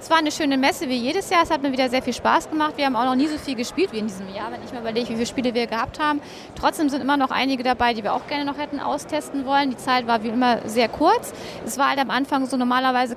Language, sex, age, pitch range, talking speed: German, female, 20-39, 250-295 Hz, 300 wpm